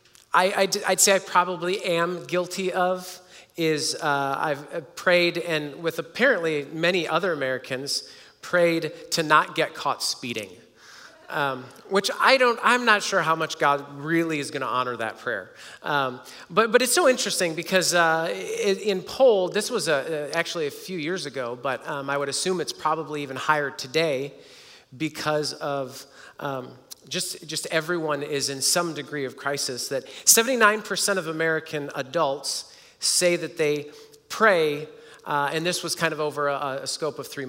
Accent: American